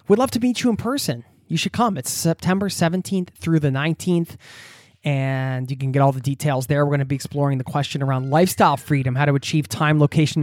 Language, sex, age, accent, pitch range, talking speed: English, male, 20-39, American, 130-160 Hz, 225 wpm